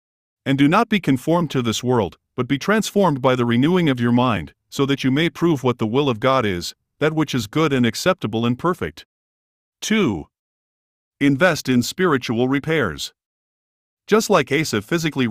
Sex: male